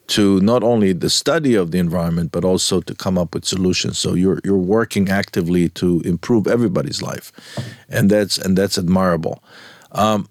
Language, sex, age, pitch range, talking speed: Hebrew, male, 50-69, 95-120 Hz, 175 wpm